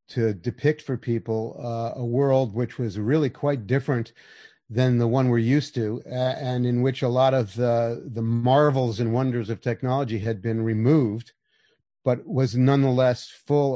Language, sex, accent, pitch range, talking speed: English, male, American, 110-130 Hz, 165 wpm